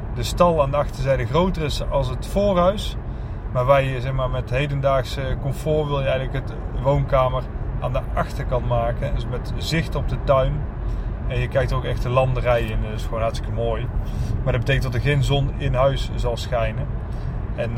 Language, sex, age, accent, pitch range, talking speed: Dutch, male, 30-49, Dutch, 115-145 Hz, 190 wpm